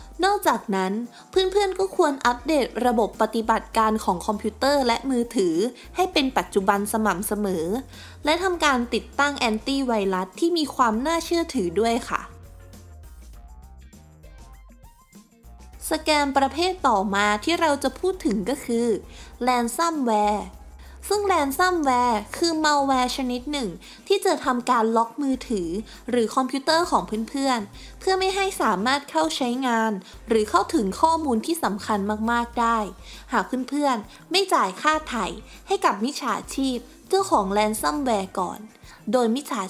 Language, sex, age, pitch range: Thai, female, 20-39, 205-290 Hz